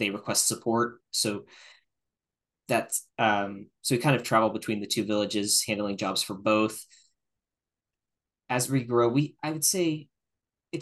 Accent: American